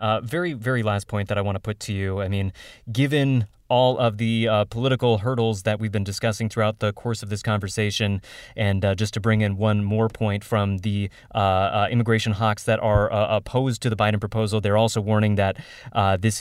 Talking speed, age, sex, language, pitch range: 220 wpm, 20-39, male, English, 105-125 Hz